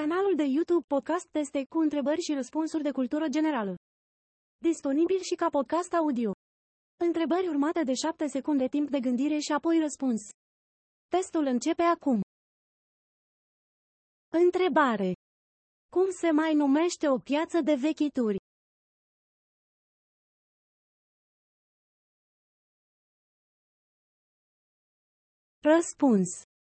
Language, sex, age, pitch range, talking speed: Romanian, female, 30-49, 260-330 Hz, 90 wpm